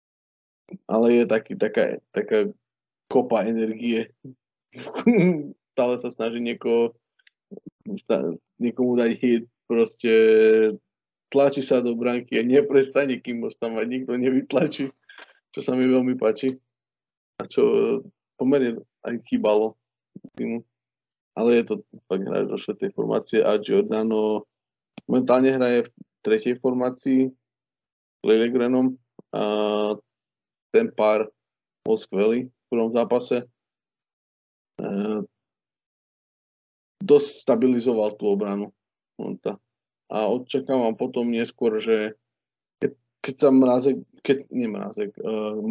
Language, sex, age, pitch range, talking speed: Slovak, male, 20-39, 110-130 Hz, 100 wpm